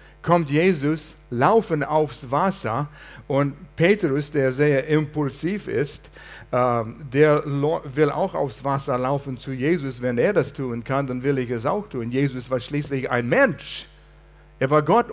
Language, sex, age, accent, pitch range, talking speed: German, male, 60-79, German, 140-170 Hz, 160 wpm